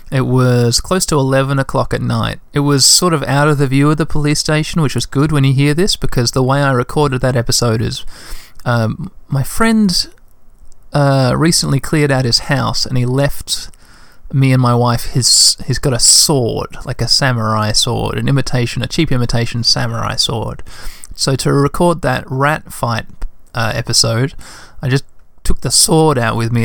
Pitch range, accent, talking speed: 115-140 Hz, Australian, 185 wpm